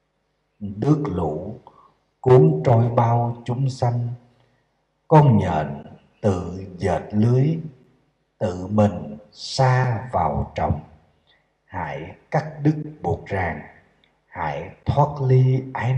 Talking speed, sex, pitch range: 100 wpm, male, 105-140 Hz